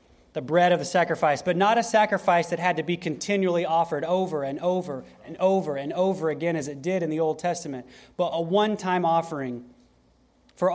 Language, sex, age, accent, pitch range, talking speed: English, male, 30-49, American, 145-185 Hz, 195 wpm